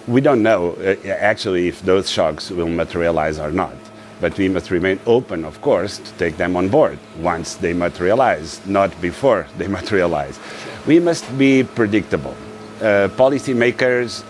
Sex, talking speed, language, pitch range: male, 155 wpm, English, 100-110 Hz